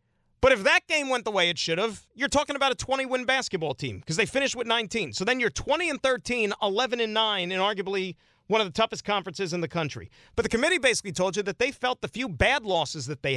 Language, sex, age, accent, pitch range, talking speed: English, male, 40-59, American, 160-230 Hz, 240 wpm